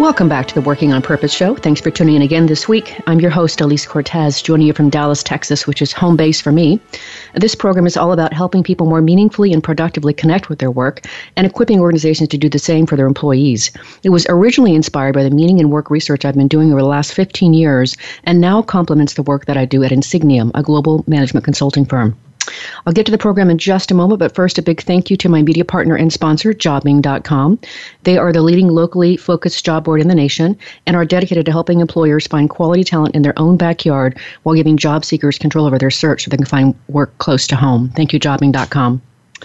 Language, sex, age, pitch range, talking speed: English, female, 40-59, 145-170 Hz, 235 wpm